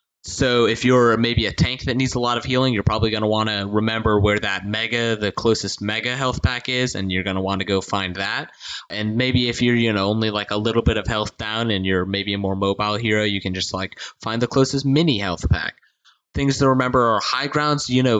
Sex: male